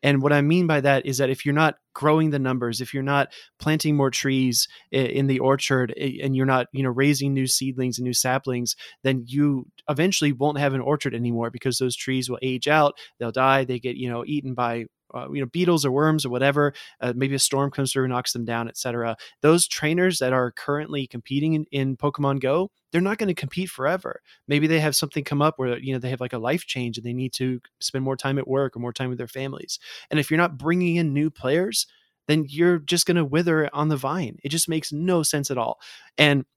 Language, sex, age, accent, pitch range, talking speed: English, male, 20-39, American, 125-150 Hz, 240 wpm